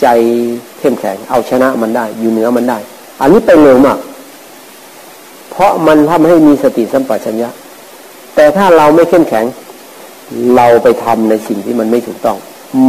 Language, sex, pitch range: Thai, male, 115-140 Hz